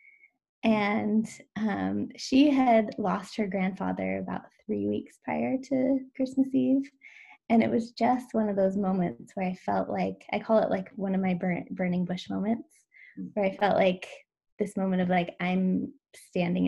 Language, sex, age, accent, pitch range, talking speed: English, female, 20-39, American, 185-235 Hz, 170 wpm